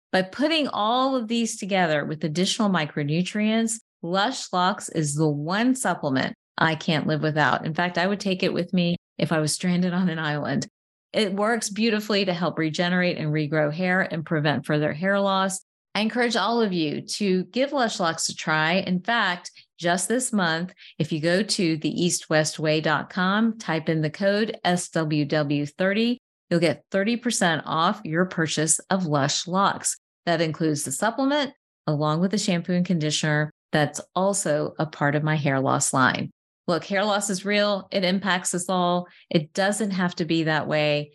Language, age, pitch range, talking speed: English, 30-49, 155-205 Hz, 170 wpm